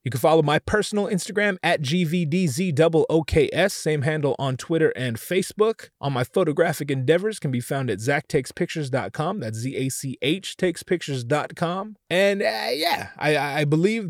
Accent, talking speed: American, 130 wpm